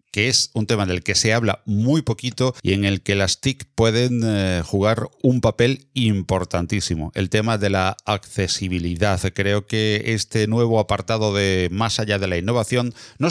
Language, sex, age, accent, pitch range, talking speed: Spanish, male, 40-59, Spanish, 95-120 Hz, 170 wpm